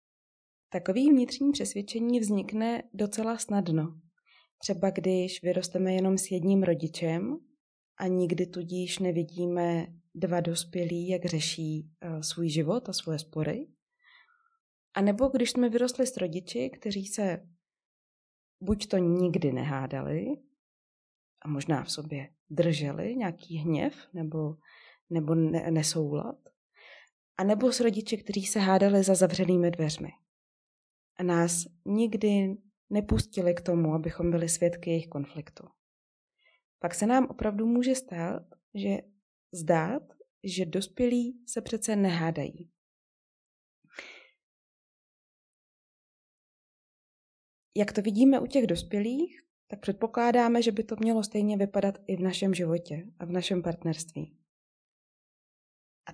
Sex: female